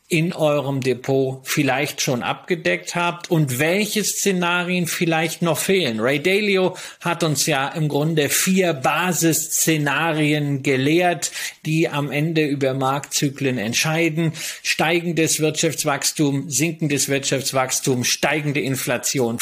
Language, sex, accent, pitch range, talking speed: German, male, German, 140-170 Hz, 110 wpm